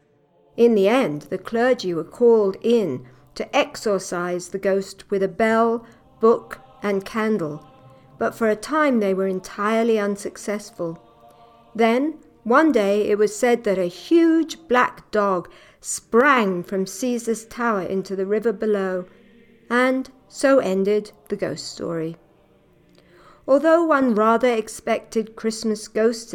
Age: 60-79